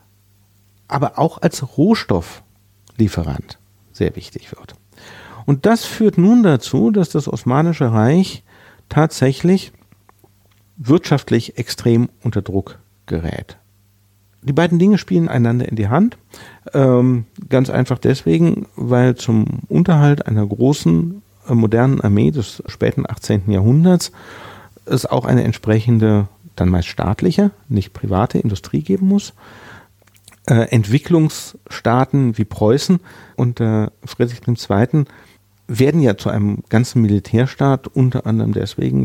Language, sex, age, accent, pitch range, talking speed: German, male, 50-69, German, 100-135 Hz, 110 wpm